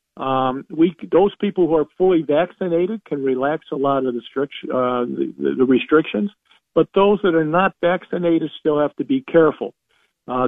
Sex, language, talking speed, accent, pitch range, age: male, English, 180 wpm, American, 125-160 Hz, 50-69